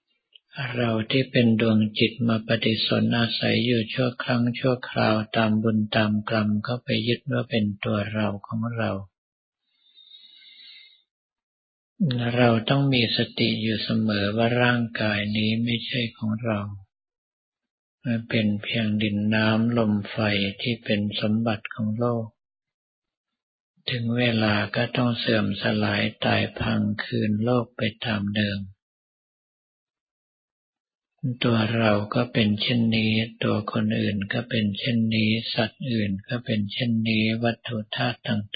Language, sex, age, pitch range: Thai, male, 50-69, 105-120 Hz